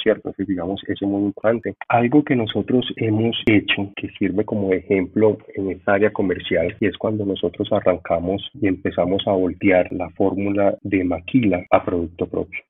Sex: male